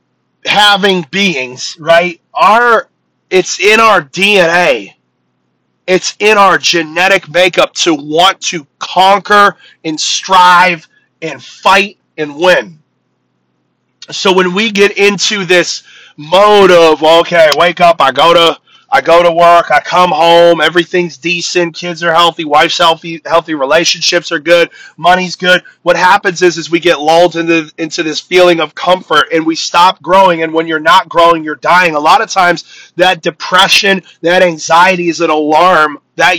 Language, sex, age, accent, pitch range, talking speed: English, male, 30-49, American, 165-190 Hz, 150 wpm